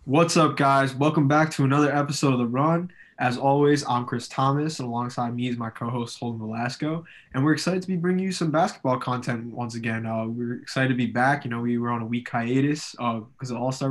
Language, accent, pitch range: English, American, 120-135 Hz